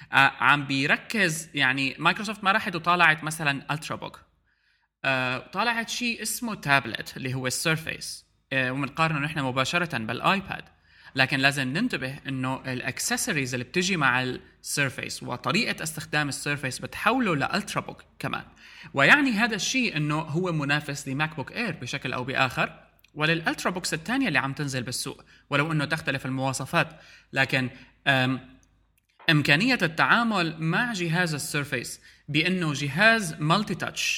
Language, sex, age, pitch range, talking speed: Arabic, male, 20-39, 130-175 Hz, 125 wpm